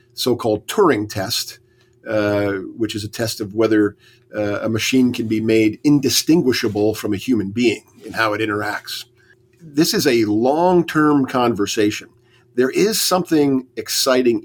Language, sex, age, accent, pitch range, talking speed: English, male, 50-69, American, 110-130 Hz, 140 wpm